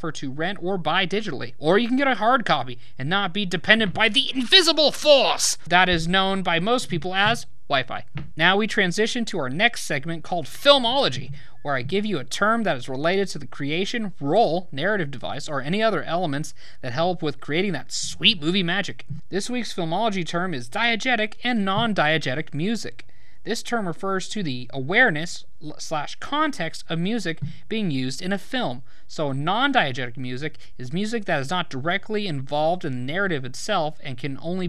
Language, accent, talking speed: English, American, 180 wpm